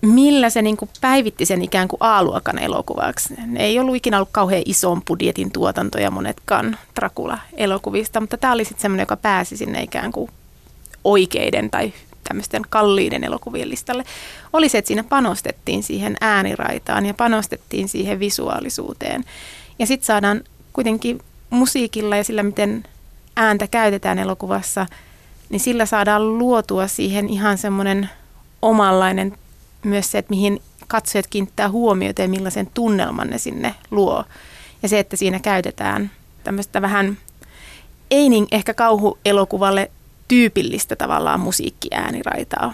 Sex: female